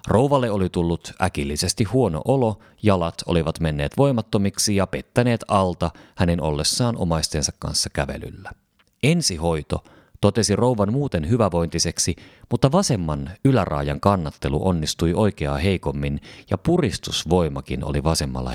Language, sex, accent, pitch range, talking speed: Finnish, male, native, 80-115 Hz, 110 wpm